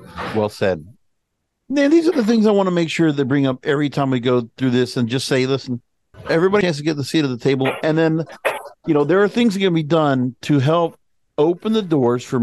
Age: 50-69